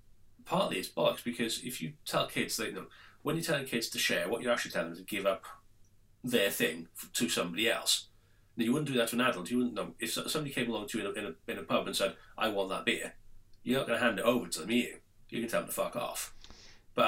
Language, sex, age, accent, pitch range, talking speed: English, male, 40-59, British, 95-120 Hz, 280 wpm